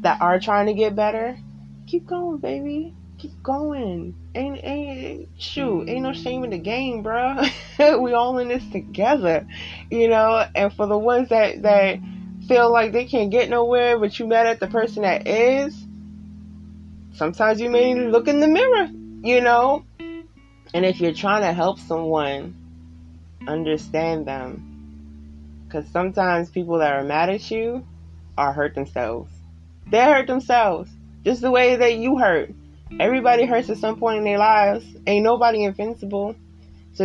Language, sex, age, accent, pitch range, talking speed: English, female, 20-39, American, 145-230 Hz, 165 wpm